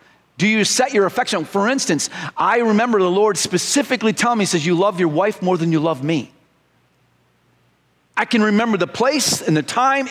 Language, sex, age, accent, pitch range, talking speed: English, male, 40-59, American, 190-255 Hz, 195 wpm